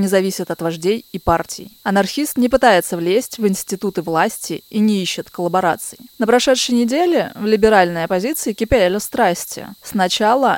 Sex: female